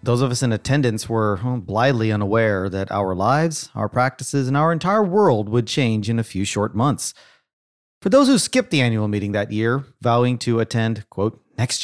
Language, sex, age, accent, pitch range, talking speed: English, male, 40-59, American, 105-150 Hz, 195 wpm